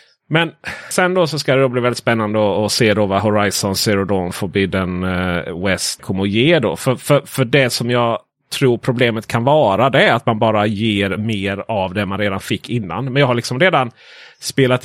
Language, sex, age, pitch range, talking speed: Swedish, male, 30-49, 110-165 Hz, 215 wpm